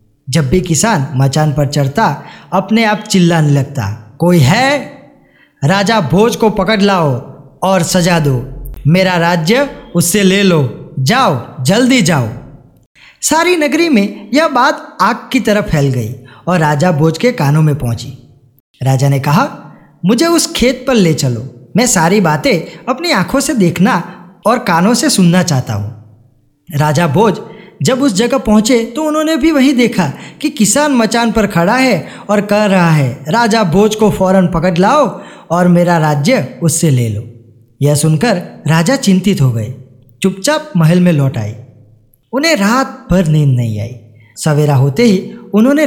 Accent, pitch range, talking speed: native, 140-225 Hz, 160 wpm